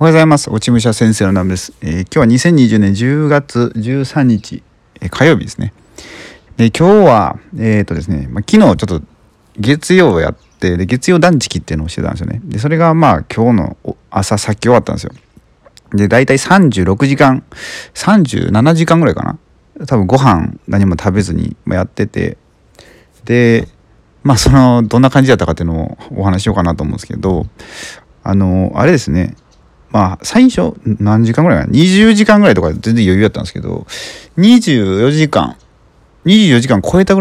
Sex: male